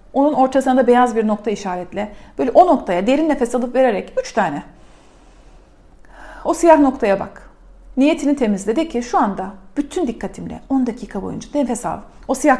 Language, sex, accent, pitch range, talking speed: Turkish, female, native, 205-270 Hz, 160 wpm